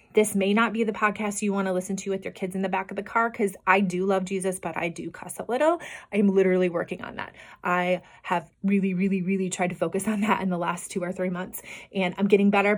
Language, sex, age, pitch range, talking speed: English, female, 30-49, 190-235 Hz, 270 wpm